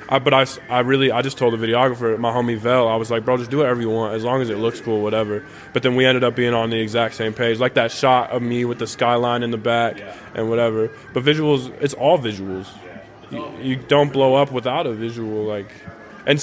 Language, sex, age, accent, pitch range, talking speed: English, male, 20-39, American, 115-135 Hz, 250 wpm